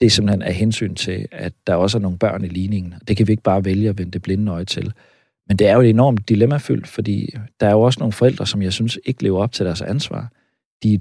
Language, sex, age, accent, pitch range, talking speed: Danish, male, 40-59, native, 100-120 Hz, 280 wpm